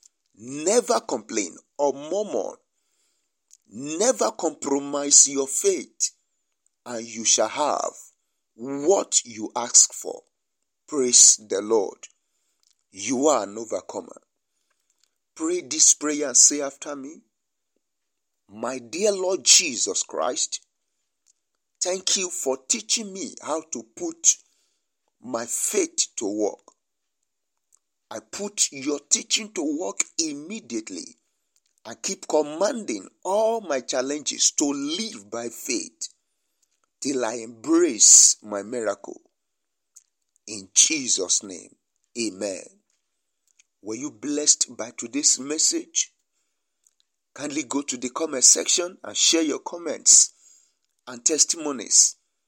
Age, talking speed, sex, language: 50-69, 105 wpm, male, English